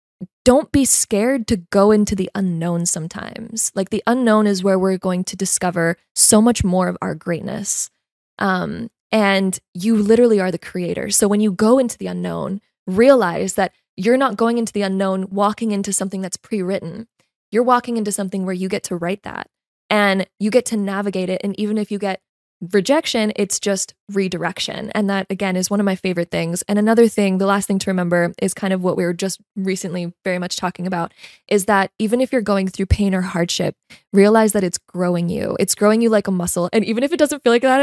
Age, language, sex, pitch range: 20-39, English, female, 180-220 Hz